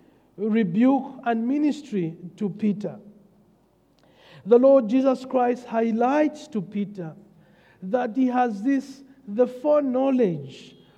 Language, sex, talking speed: English, male, 100 wpm